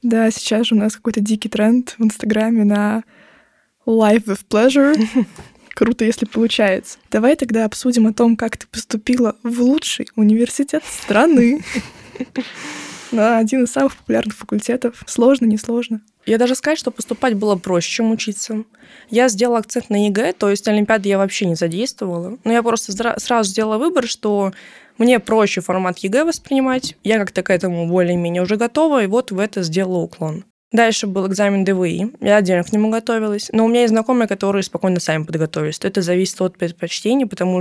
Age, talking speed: 20-39, 170 wpm